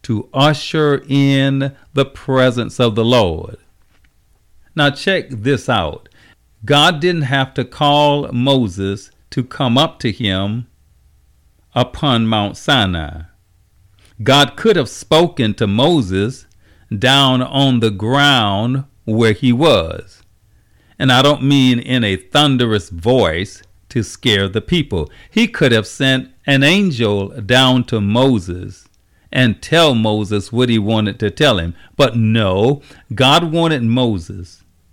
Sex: male